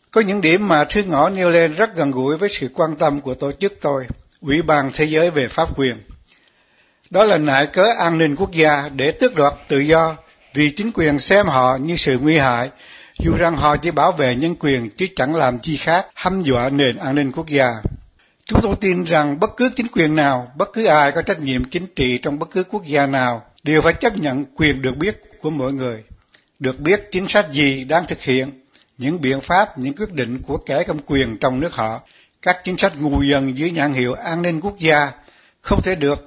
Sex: male